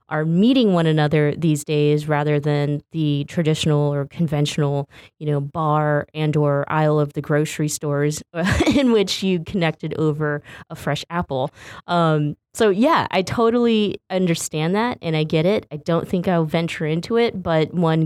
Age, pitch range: 20-39, 150-190 Hz